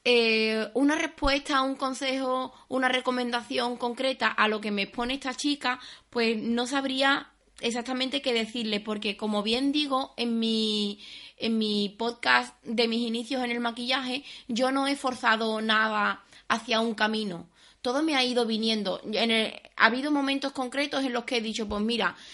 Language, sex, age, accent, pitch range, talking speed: Spanish, female, 20-39, Spanish, 230-265 Hz, 165 wpm